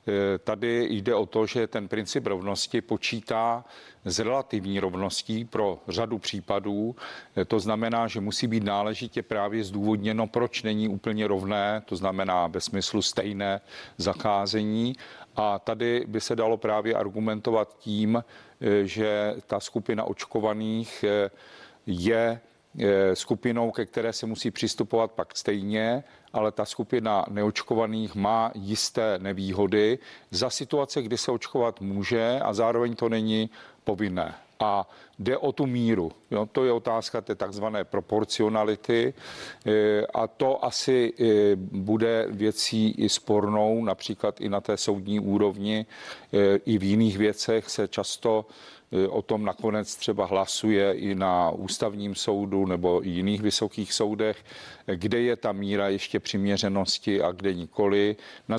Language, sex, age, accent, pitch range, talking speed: Czech, male, 40-59, native, 100-115 Hz, 130 wpm